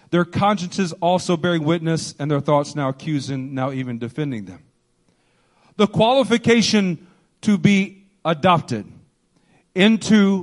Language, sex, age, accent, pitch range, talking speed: English, male, 40-59, American, 155-220 Hz, 115 wpm